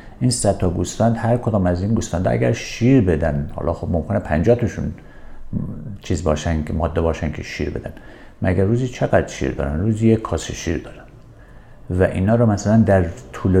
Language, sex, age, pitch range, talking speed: Persian, male, 50-69, 85-120 Hz, 165 wpm